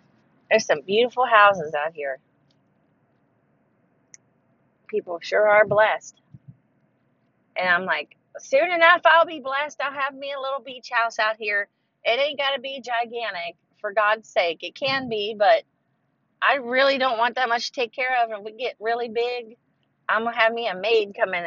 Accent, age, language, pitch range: American, 40-59, English, 205-275 Hz